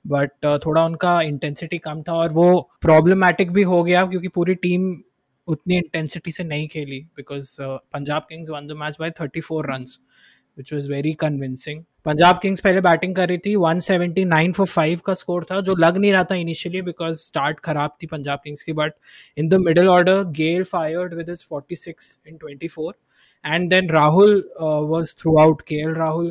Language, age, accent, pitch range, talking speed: Hindi, 20-39, native, 150-175 Hz, 180 wpm